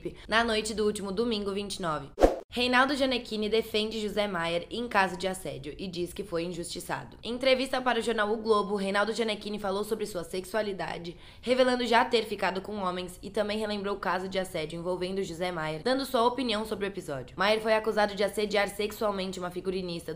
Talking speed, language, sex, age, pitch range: 190 wpm, Portuguese, female, 20-39, 180-215 Hz